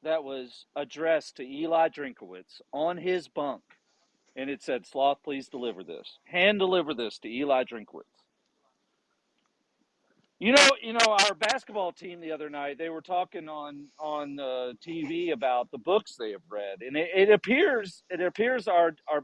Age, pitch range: 40-59, 140-200 Hz